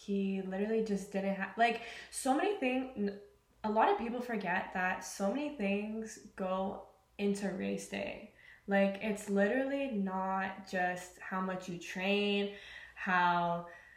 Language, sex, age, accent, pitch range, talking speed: English, female, 10-29, American, 185-205 Hz, 140 wpm